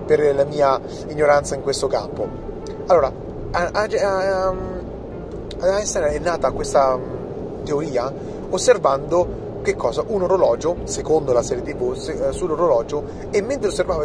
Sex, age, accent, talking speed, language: male, 30-49, native, 115 wpm, Italian